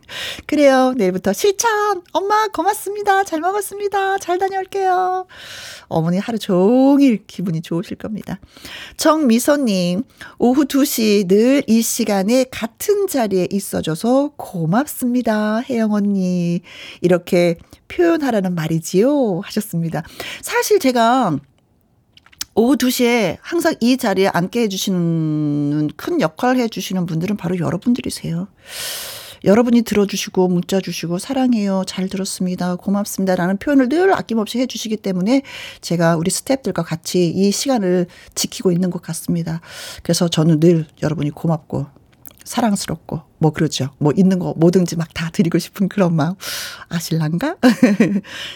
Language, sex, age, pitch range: Korean, female, 40-59, 175-260 Hz